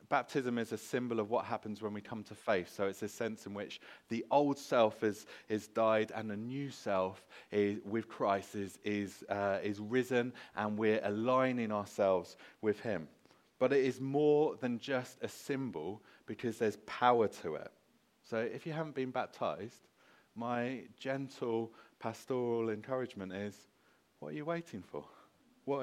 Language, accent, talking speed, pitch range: English, British, 165 wpm, 95-120 Hz